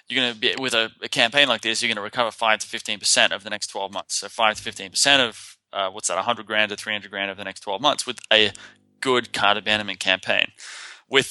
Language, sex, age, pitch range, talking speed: English, male, 20-39, 105-120 Hz, 260 wpm